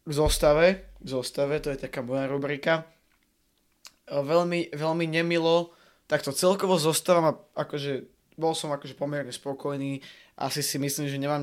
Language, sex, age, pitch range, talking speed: Slovak, male, 20-39, 135-155 Hz, 140 wpm